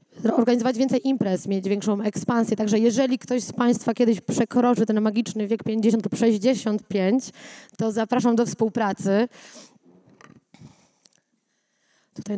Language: Polish